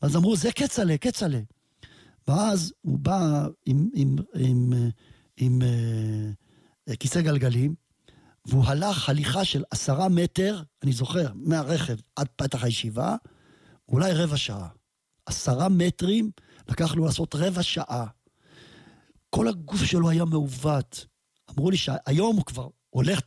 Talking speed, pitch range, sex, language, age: 125 wpm, 135-195 Hz, male, Hebrew, 50-69